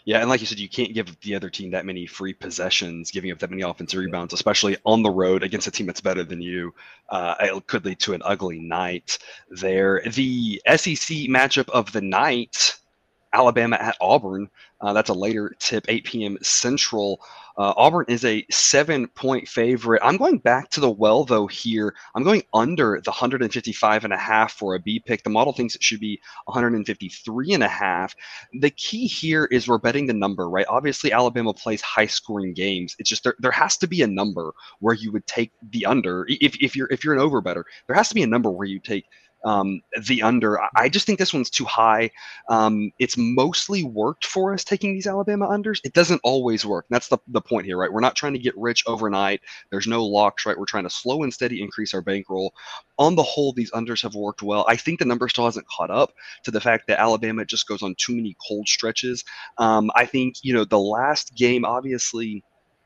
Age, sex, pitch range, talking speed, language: 20-39, male, 100-125 Hz, 215 wpm, English